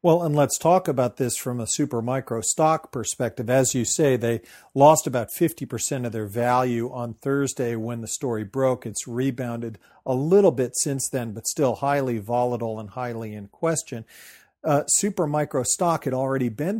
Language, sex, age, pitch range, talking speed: English, male, 40-59, 120-145 Hz, 180 wpm